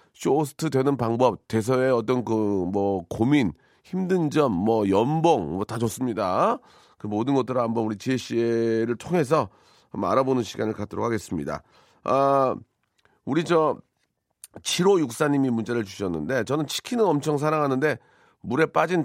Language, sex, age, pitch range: Korean, male, 40-59, 115-155 Hz